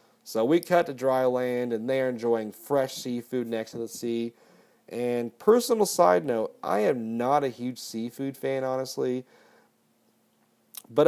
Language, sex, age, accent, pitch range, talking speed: English, male, 30-49, American, 110-135 Hz, 150 wpm